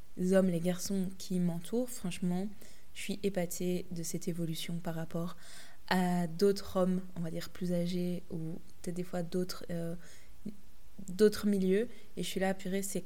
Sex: female